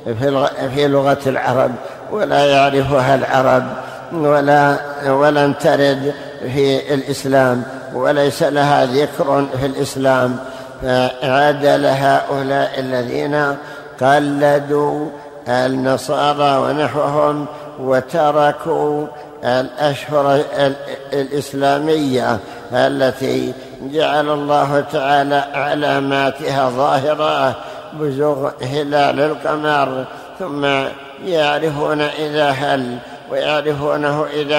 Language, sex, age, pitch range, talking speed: Arabic, male, 60-79, 135-150 Hz, 70 wpm